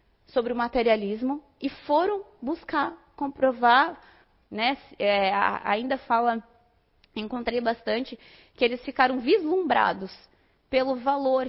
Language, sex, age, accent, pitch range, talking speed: Portuguese, female, 20-39, Brazilian, 225-285 Hz, 95 wpm